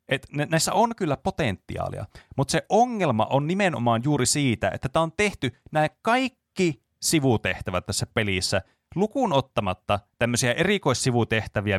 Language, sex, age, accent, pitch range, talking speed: Finnish, male, 30-49, native, 105-150 Hz, 125 wpm